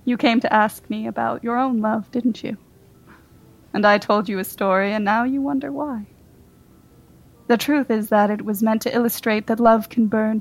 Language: English